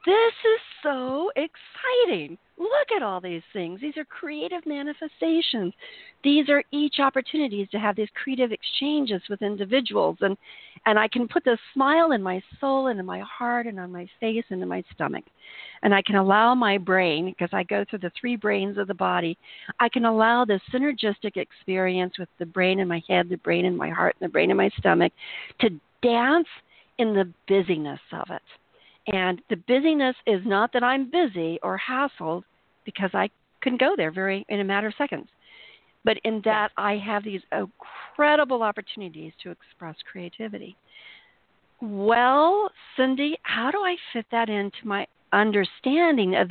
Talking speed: 175 wpm